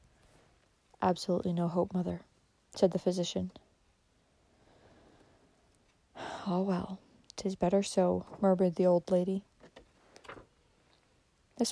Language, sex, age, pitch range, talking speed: English, female, 40-59, 180-210 Hz, 85 wpm